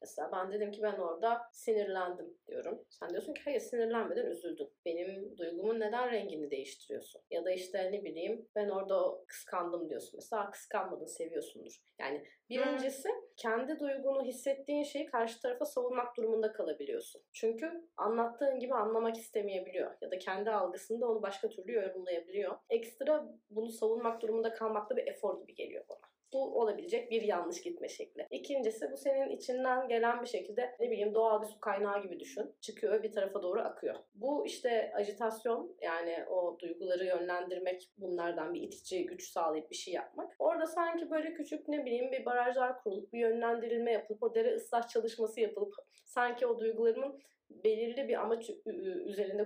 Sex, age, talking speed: female, 30-49, 160 wpm